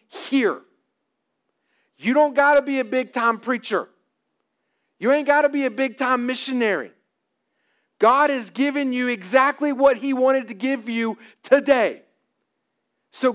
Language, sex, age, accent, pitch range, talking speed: English, male, 40-59, American, 195-285 Hz, 145 wpm